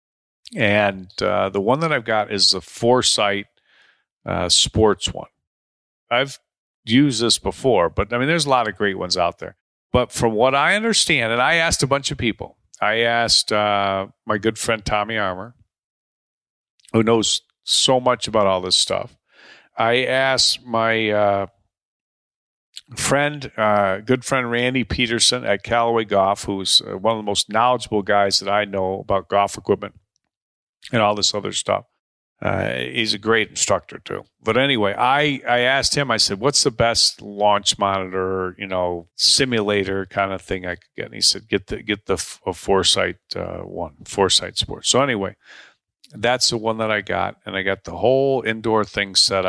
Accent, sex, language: American, male, English